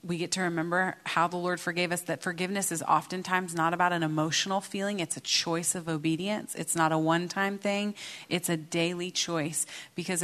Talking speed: 195 wpm